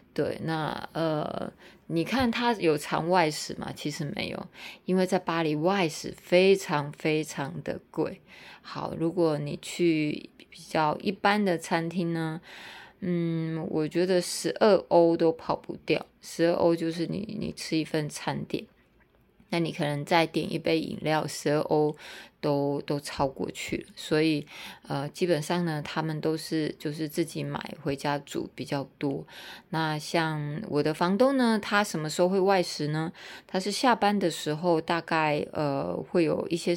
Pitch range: 155-185 Hz